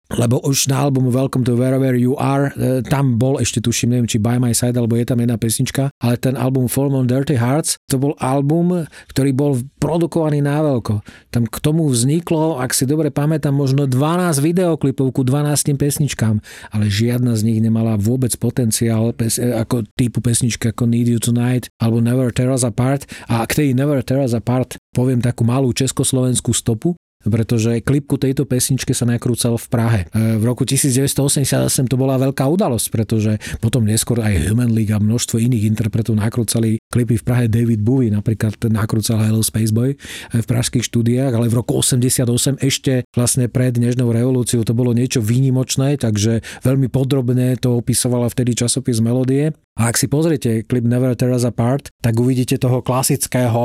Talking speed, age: 175 wpm, 40-59